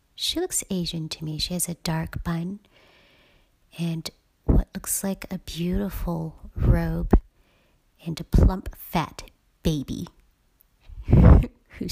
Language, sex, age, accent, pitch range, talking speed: English, female, 40-59, American, 160-190 Hz, 115 wpm